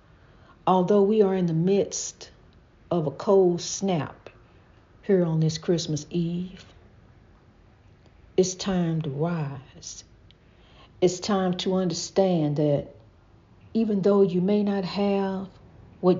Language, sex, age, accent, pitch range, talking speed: English, female, 60-79, American, 115-185 Hz, 115 wpm